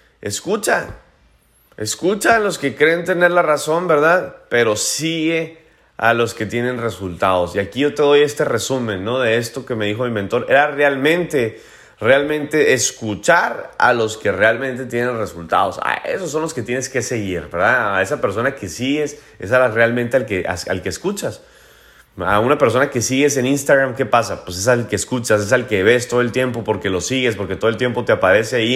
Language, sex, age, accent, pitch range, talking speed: Spanish, male, 30-49, Mexican, 110-145 Hz, 200 wpm